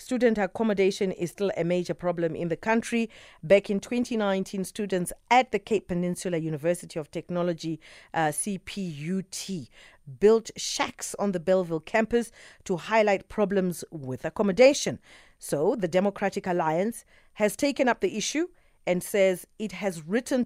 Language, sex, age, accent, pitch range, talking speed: English, female, 40-59, South African, 165-210 Hz, 140 wpm